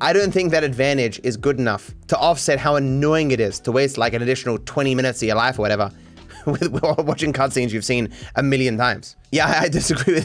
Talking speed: 220 wpm